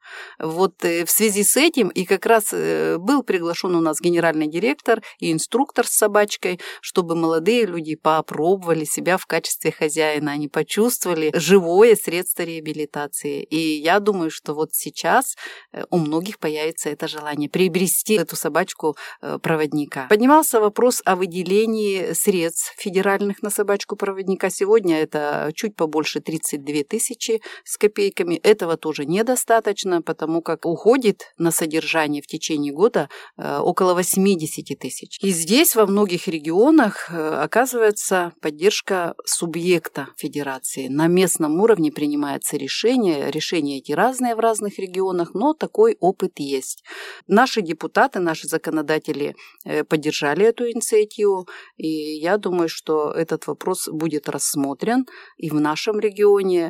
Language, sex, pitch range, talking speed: Russian, female, 155-215 Hz, 125 wpm